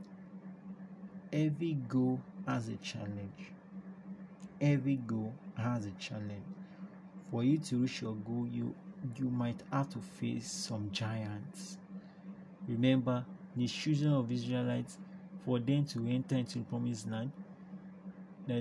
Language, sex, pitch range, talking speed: English, male, 125-190 Hz, 125 wpm